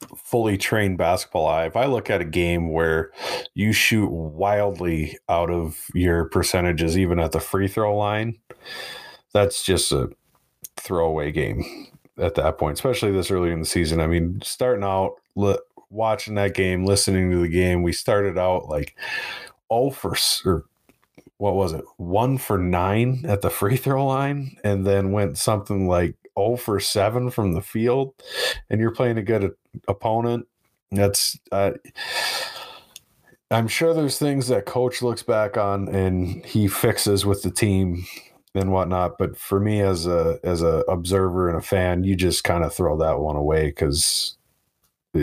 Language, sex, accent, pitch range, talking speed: English, male, American, 85-110 Hz, 165 wpm